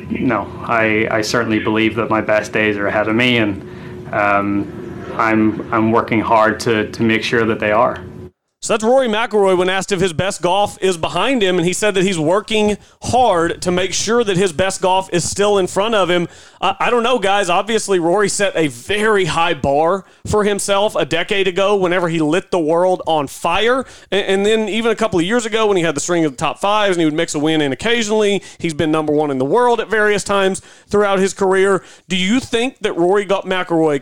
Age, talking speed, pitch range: 30-49, 220 wpm, 155-200 Hz